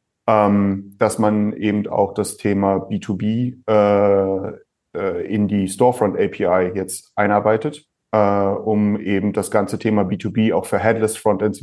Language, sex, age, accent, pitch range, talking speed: German, male, 30-49, German, 100-120 Hz, 120 wpm